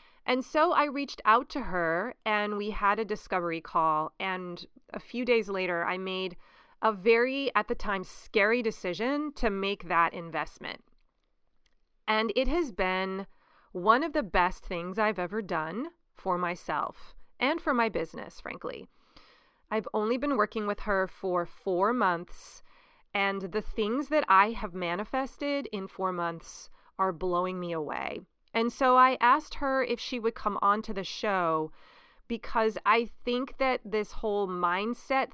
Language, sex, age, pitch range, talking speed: English, female, 30-49, 185-245 Hz, 160 wpm